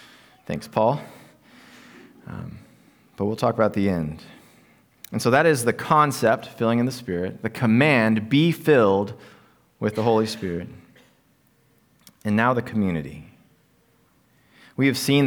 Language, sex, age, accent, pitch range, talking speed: English, male, 30-49, American, 110-140 Hz, 135 wpm